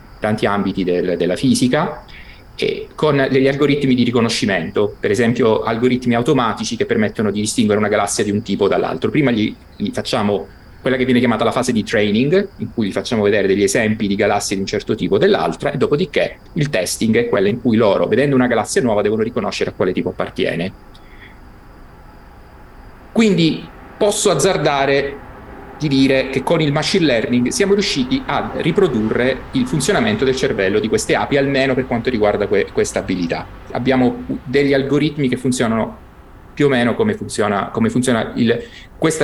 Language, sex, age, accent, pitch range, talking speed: Italian, male, 30-49, native, 105-140 Hz, 170 wpm